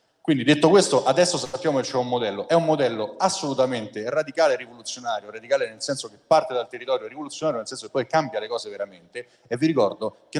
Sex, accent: male, native